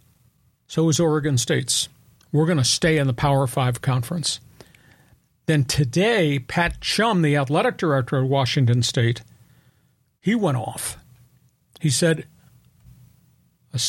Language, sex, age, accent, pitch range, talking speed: English, male, 50-69, American, 130-160 Hz, 125 wpm